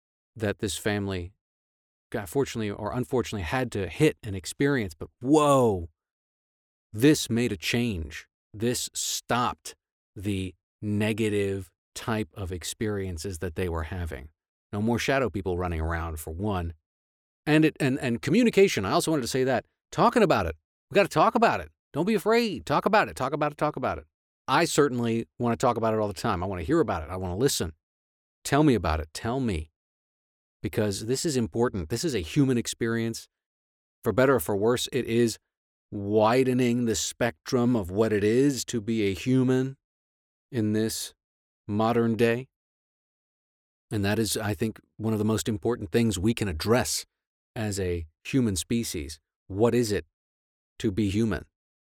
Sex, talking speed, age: male, 175 wpm, 40-59